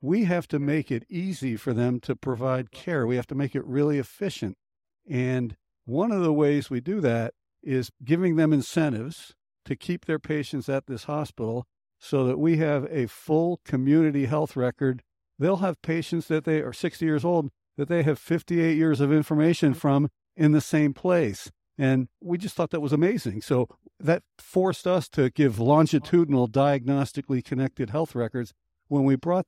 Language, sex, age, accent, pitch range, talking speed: English, male, 60-79, American, 130-165 Hz, 180 wpm